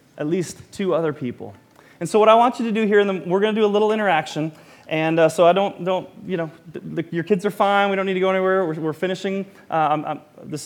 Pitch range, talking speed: 170-225 Hz, 250 wpm